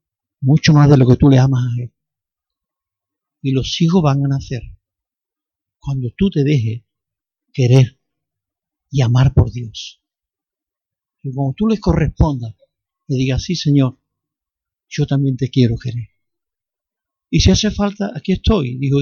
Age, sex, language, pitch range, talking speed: 60-79, male, Spanish, 125-175 Hz, 145 wpm